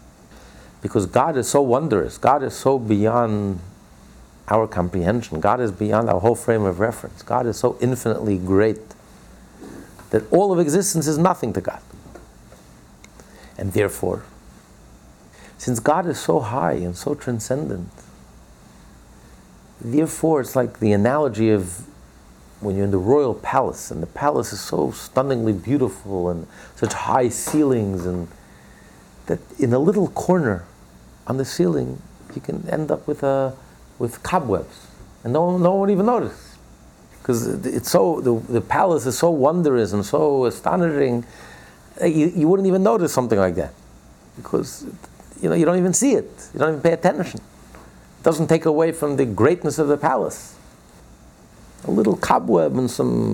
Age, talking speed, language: 50-69, 150 wpm, English